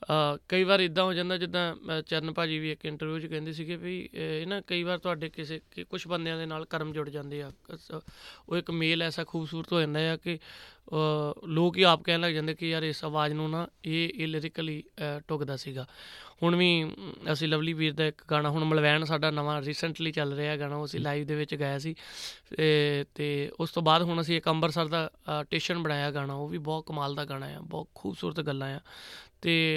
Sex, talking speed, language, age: male, 205 wpm, Punjabi, 30-49